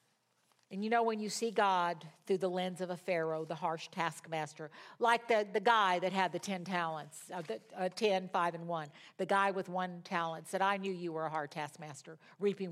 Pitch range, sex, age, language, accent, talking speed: 165-205 Hz, female, 50-69, English, American, 210 wpm